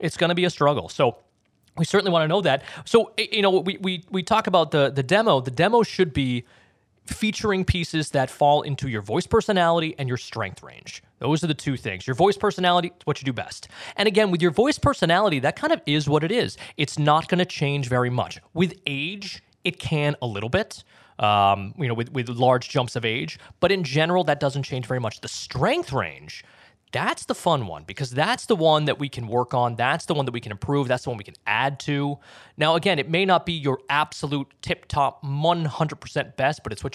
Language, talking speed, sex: English, 225 wpm, male